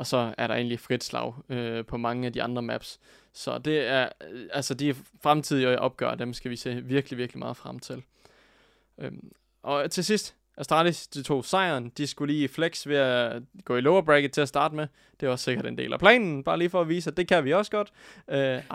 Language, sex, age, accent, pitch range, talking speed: Danish, male, 20-39, native, 125-155 Hz, 235 wpm